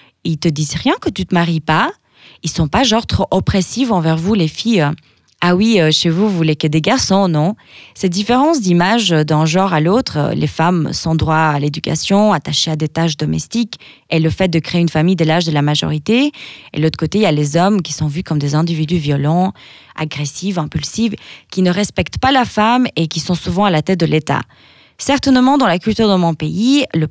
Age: 20-39